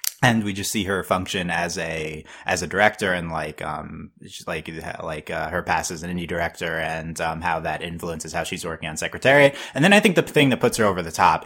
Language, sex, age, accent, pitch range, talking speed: English, male, 20-39, American, 80-95 Hz, 240 wpm